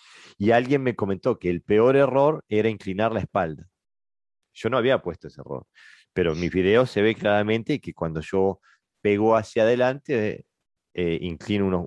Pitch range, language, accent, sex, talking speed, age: 90-115 Hz, Spanish, Argentinian, male, 175 wpm, 40-59